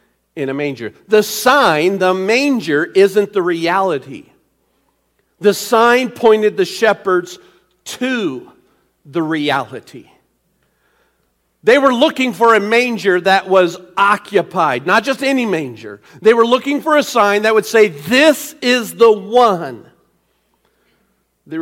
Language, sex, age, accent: English, male, 50-69, American